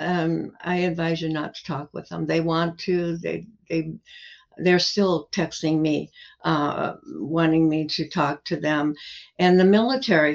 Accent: American